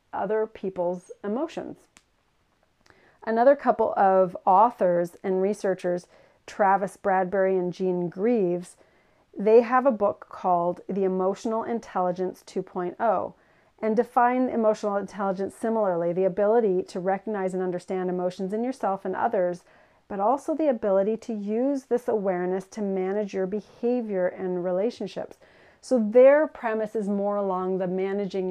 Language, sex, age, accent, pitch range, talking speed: English, female, 40-59, American, 185-220 Hz, 130 wpm